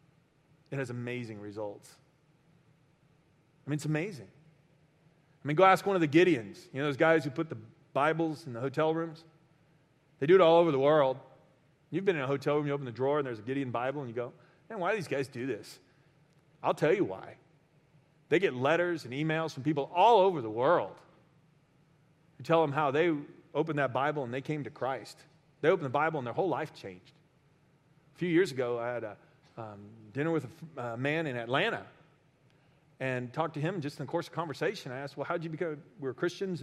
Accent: American